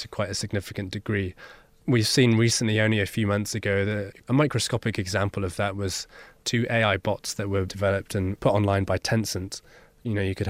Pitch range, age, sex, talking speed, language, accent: 95-110 Hz, 20-39, male, 200 wpm, English, British